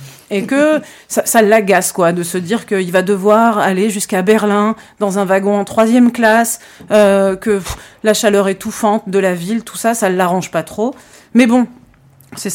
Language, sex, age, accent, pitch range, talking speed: French, female, 40-59, French, 185-230 Hz, 190 wpm